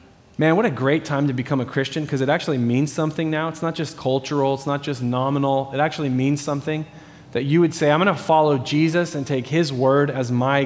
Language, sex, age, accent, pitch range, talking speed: English, male, 20-39, American, 125-155 Hz, 235 wpm